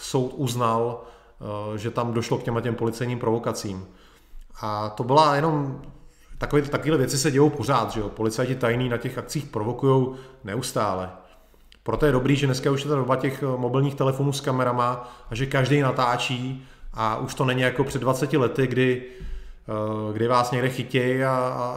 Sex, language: male, Czech